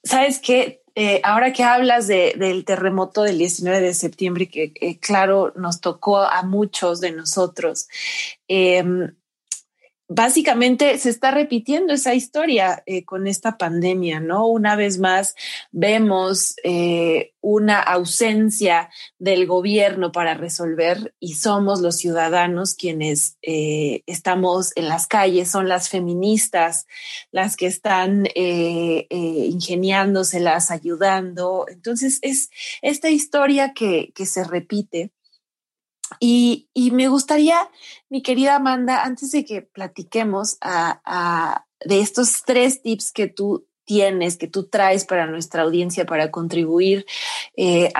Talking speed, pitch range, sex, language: 125 wpm, 175-245 Hz, female, Spanish